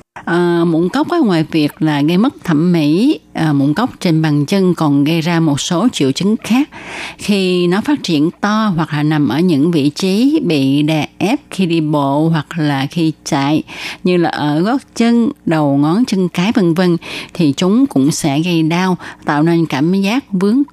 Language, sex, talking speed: Vietnamese, female, 195 wpm